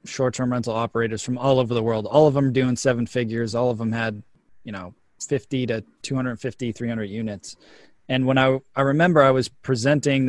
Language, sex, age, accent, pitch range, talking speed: English, male, 20-39, American, 115-145 Hz, 210 wpm